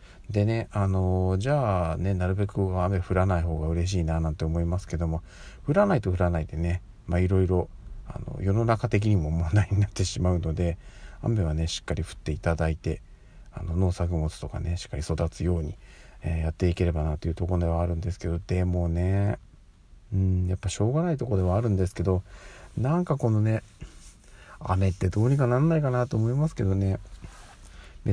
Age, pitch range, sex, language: 40-59, 85-105 Hz, male, Japanese